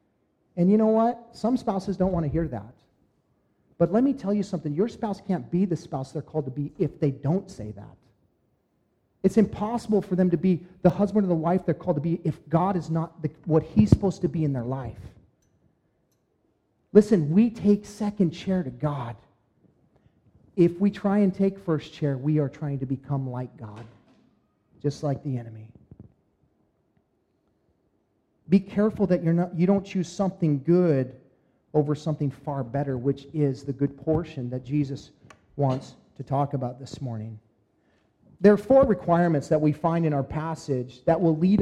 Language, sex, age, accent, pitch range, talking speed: English, male, 40-59, American, 145-195 Hz, 180 wpm